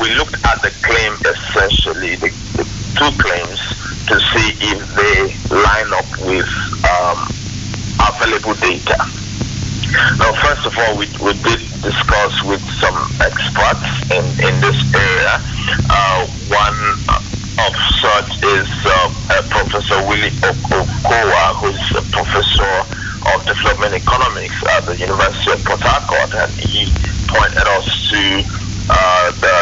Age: 50-69